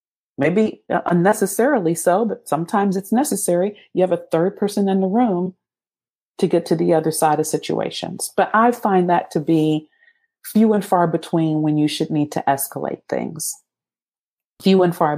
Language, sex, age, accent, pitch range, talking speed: English, female, 40-59, American, 160-205 Hz, 170 wpm